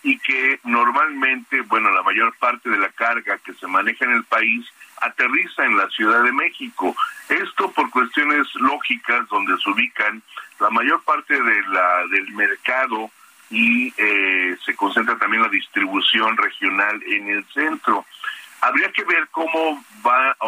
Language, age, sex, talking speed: Spanish, 50-69, male, 155 wpm